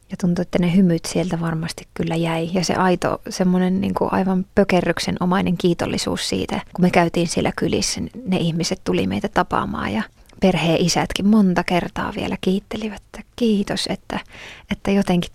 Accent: native